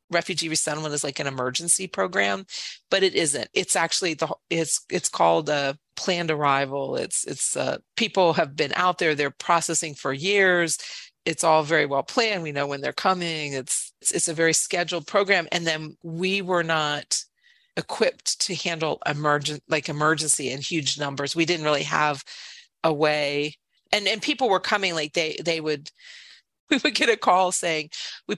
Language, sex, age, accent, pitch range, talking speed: English, female, 40-59, American, 150-195 Hz, 180 wpm